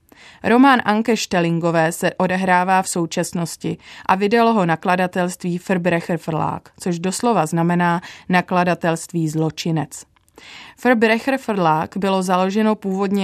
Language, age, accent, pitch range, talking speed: Czech, 30-49, native, 175-200 Hz, 95 wpm